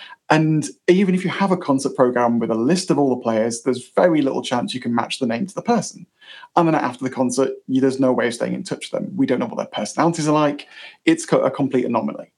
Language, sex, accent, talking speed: English, male, British, 255 wpm